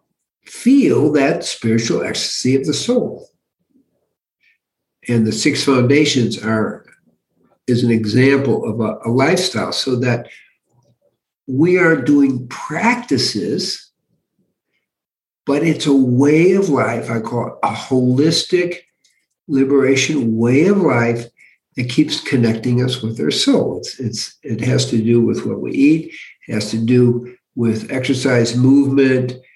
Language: English